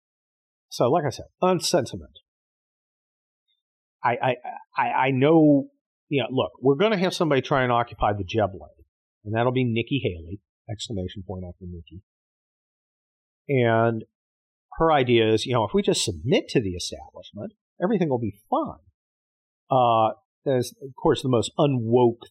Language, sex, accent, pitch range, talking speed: English, male, American, 95-140 Hz, 155 wpm